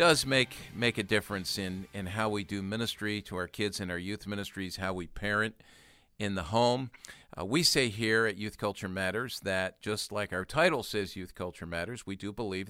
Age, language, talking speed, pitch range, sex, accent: 50-69, English, 210 wpm, 95-115 Hz, male, American